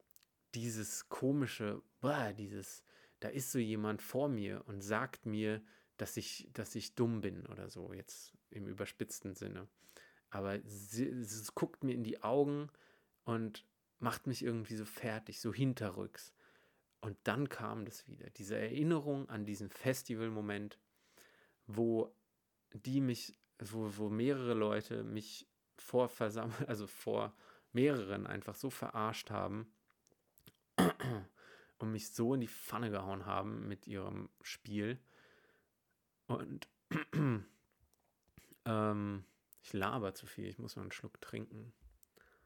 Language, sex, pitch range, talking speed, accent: German, male, 105-120 Hz, 125 wpm, German